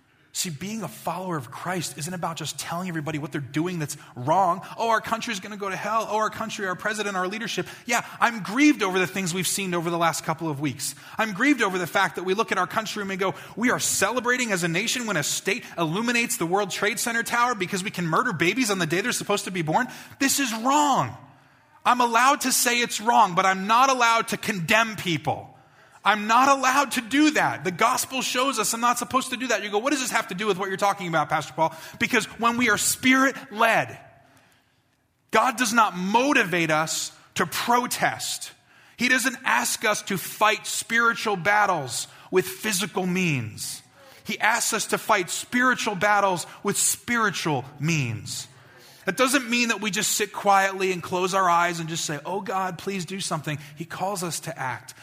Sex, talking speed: male, 210 wpm